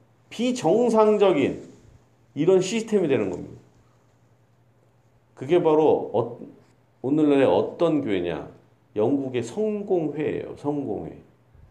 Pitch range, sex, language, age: 120-180 Hz, male, Korean, 40-59